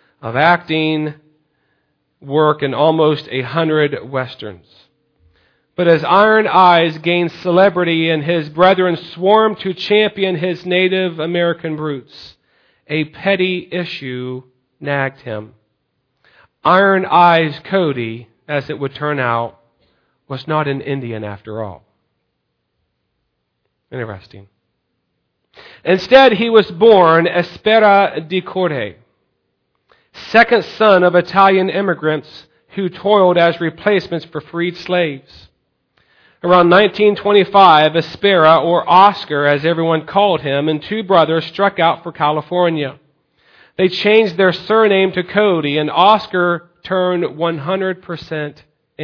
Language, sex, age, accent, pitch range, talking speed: English, male, 40-59, American, 150-185 Hz, 110 wpm